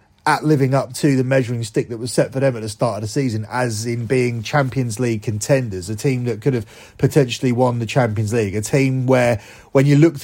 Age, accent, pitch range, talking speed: 30-49, British, 110-140 Hz, 235 wpm